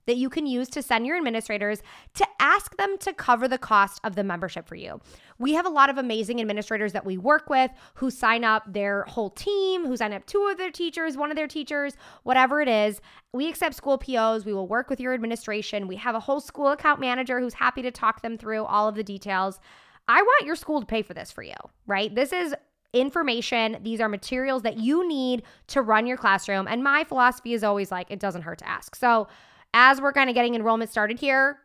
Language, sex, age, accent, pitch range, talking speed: English, female, 20-39, American, 200-270 Hz, 230 wpm